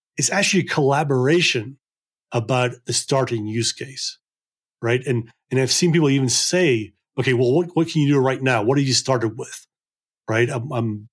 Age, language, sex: 30-49, English, male